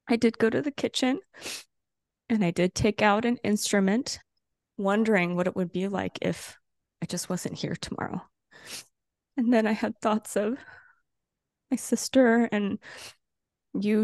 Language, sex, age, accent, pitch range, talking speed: English, female, 20-39, American, 175-220 Hz, 150 wpm